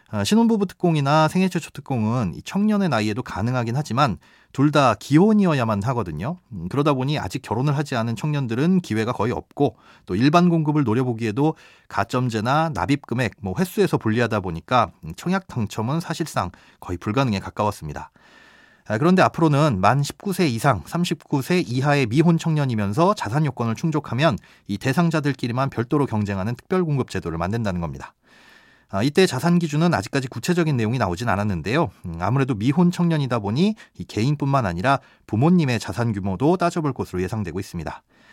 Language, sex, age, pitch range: Korean, male, 30-49, 110-165 Hz